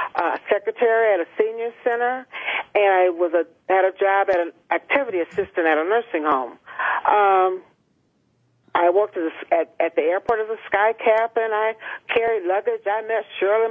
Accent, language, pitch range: American, English, 180-225 Hz